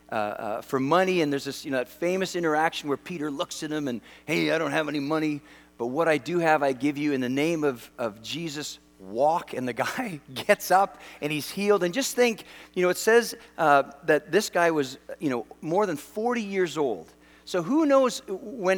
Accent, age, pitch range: American, 40-59, 140-195 Hz